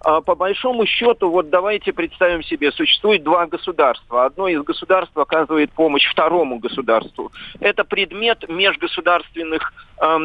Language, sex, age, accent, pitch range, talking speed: Russian, male, 40-59, native, 140-185 Hz, 125 wpm